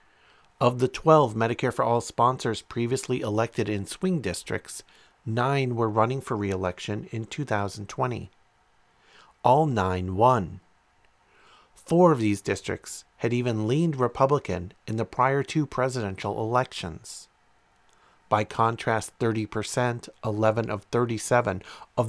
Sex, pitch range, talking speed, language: male, 105-130 Hz, 115 wpm, English